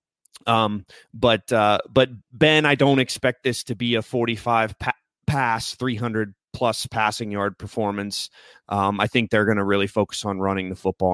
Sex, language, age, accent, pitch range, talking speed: male, English, 30-49, American, 110-140 Hz, 165 wpm